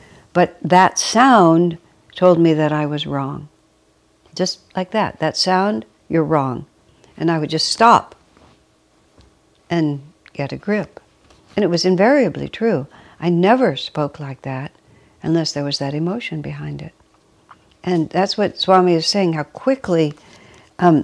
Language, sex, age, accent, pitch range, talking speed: English, female, 60-79, American, 155-195 Hz, 145 wpm